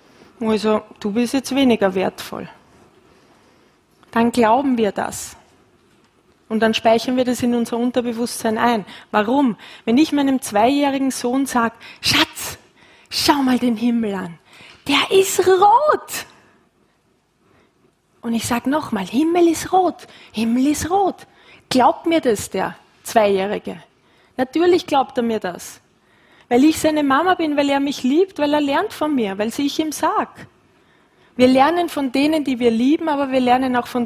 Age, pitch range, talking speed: 20-39, 230-290 Hz, 150 wpm